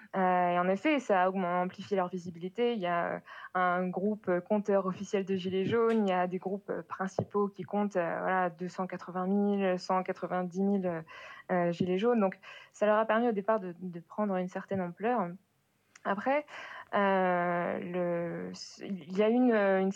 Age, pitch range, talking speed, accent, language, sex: 20-39, 180-205 Hz, 170 wpm, French, French, female